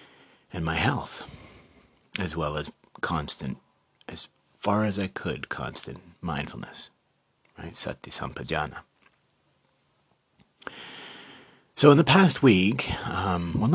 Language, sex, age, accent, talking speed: English, male, 30-49, American, 100 wpm